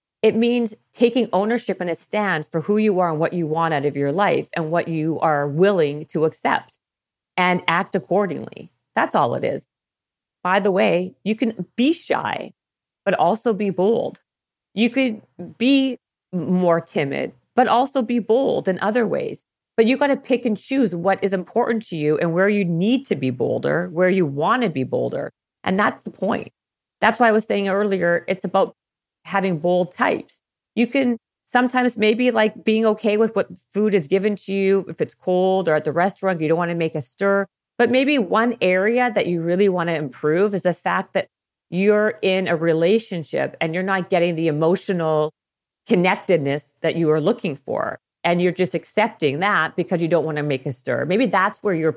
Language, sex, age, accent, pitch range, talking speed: English, female, 40-59, American, 165-220 Hz, 195 wpm